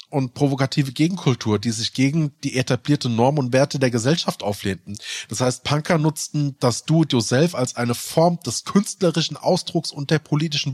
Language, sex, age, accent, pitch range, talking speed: German, male, 30-49, German, 115-150 Hz, 160 wpm